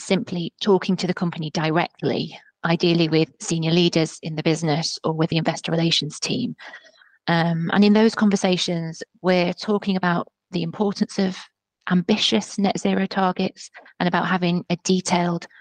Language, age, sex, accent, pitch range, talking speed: English, 30-49, female, British, 165-195 Hz, 150 wpm